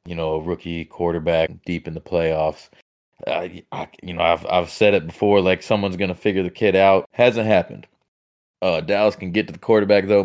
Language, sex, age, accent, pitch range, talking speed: English, male, 20-39, American, 85-100 Hz, 210 wpm